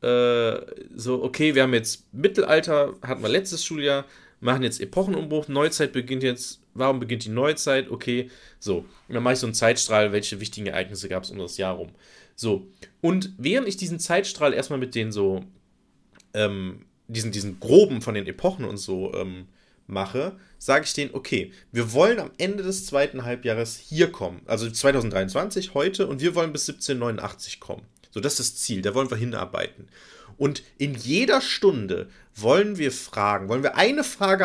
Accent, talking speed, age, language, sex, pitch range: German, 175 wpm, 30-49, German, male, 115-160 Hz